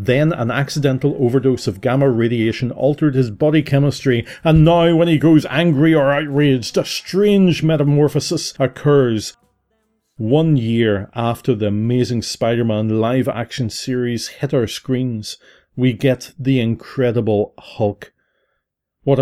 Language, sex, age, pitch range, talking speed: English, male, 30-49, 115-145 Hz, 130 wpm